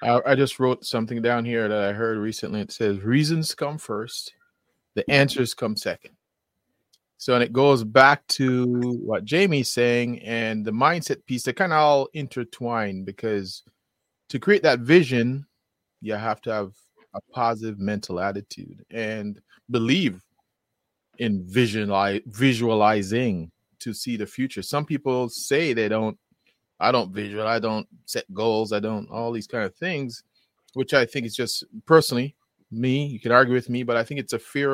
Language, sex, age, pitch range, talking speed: English, male, 30-49, 110-135 Hz, 165 wpm